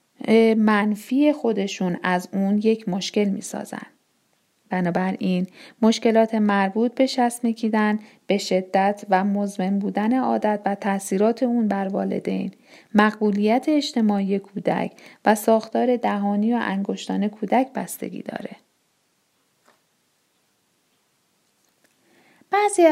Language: Persian